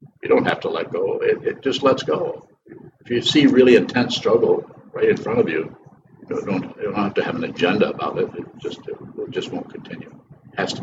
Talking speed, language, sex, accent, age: 220 wpm, English, male, American, 60-79